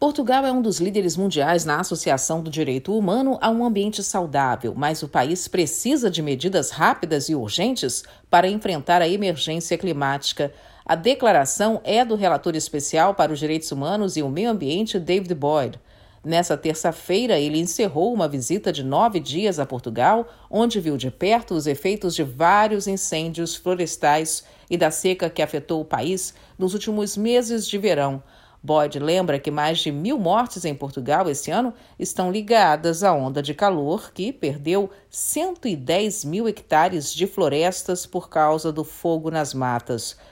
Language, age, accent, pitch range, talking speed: Portuguese, 50-69, Brazilian, 150-200 Hz, 160 wpm